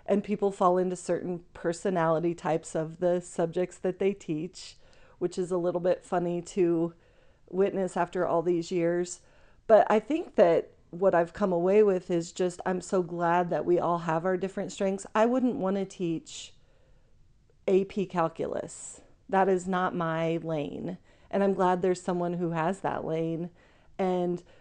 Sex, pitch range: female, 170-190 Hz